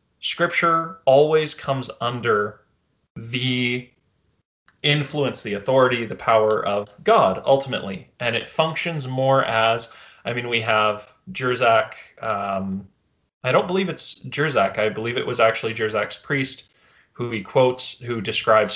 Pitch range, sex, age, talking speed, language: 110-145 Hz, male, 20-39, 130 wpm, English